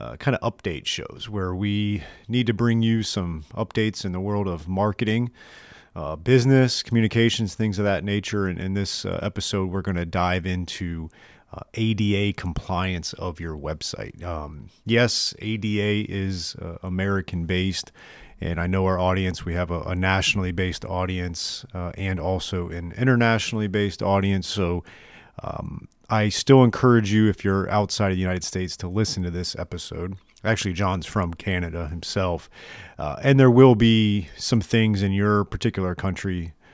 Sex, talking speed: male, 165 wpm